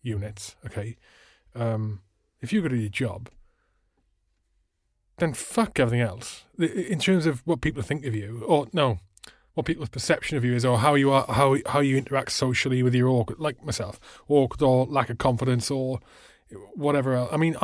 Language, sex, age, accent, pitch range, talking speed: English, male, 30-49, British, 110-135 Hz, 180 wpm